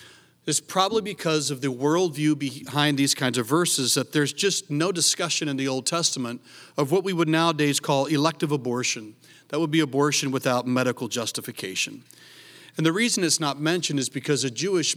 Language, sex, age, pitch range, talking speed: English, male, 40-59, 130-170 Hz, 180 wpm